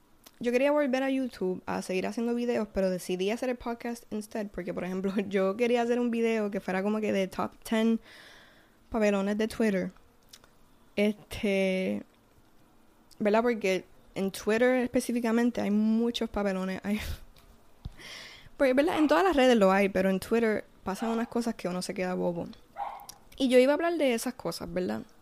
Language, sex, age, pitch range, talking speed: Spanish, female, 10-29, 195-240 Hz, 170 wpm